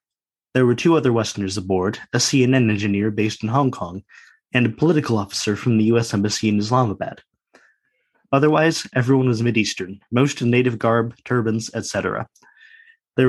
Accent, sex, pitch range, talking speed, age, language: American, male, 110-135 Hz, 155 wpm, 20-39, English